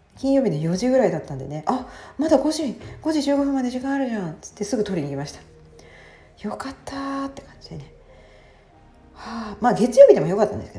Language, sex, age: Japanese, female, 40-59